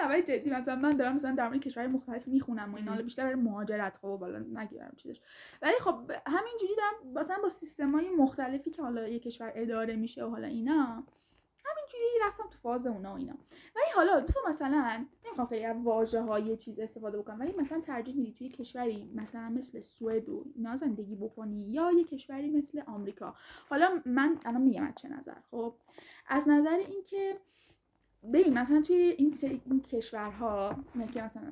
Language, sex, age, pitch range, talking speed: Persian, female, 10-29, 230-295 Hz, 175 wpm